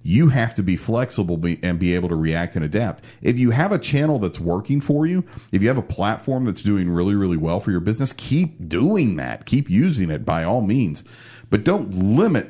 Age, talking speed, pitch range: 40-59, 220 wpm, 85-115 Hz